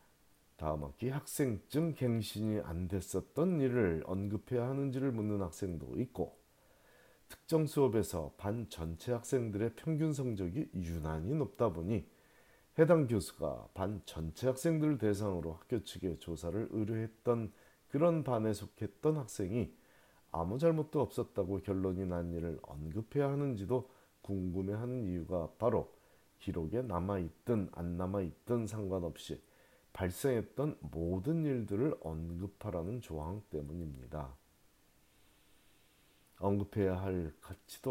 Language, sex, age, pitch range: Korean, male, 40-59, 85-125 Hz